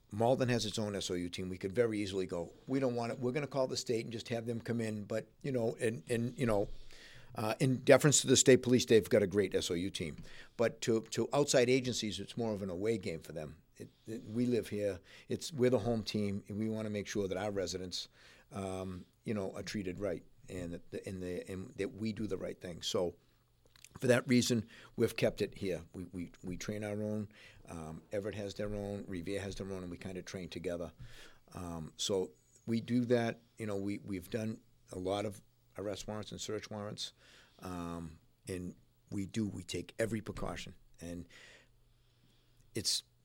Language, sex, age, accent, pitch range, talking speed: English, male, 50-69, American, 95-120 Hz, 215 wpm